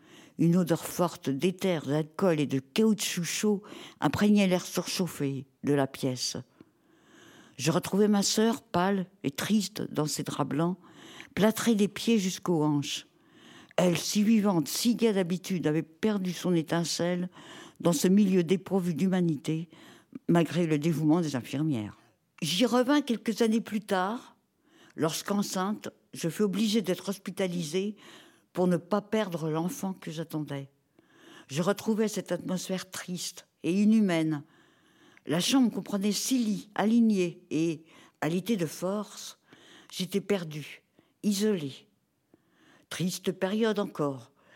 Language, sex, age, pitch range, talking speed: French, female, 60-79, 165-210 Hz, 125 wpm